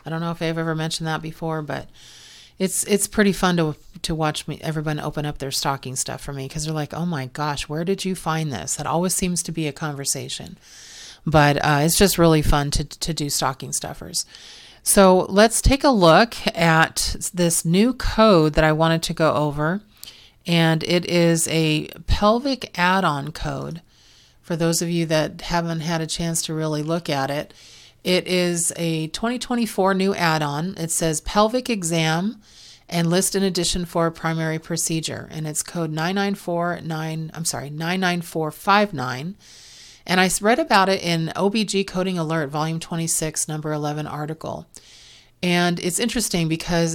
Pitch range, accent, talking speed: 155-185 Hz, American, 170 wpm